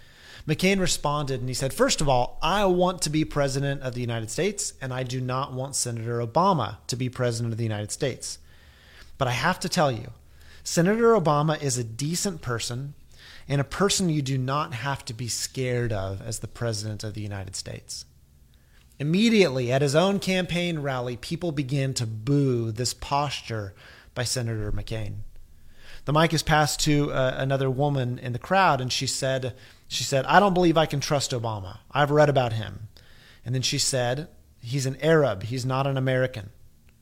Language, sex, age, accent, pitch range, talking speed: English, male, 30-49, American, 115-150 Hz, 185 wpm